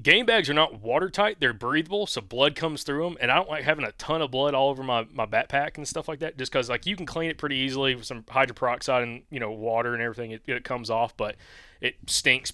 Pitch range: 115-140 Hz